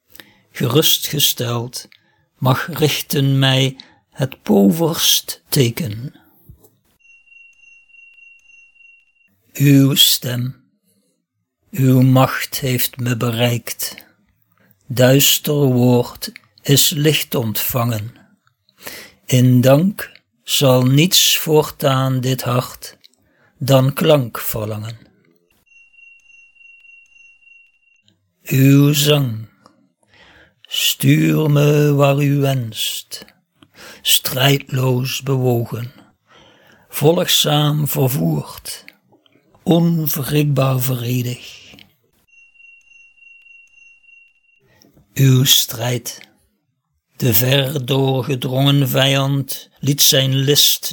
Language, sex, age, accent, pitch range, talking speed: Dutch, male, 60-79, Dutch, 125-150 Hz, 60 wpm